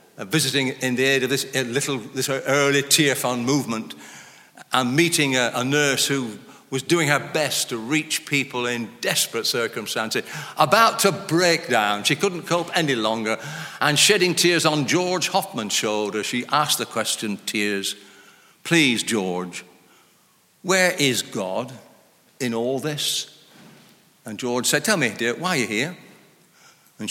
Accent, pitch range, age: British, 125-165 Hz, 60-79